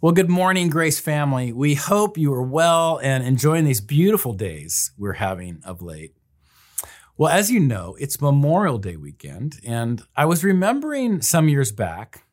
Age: 50-69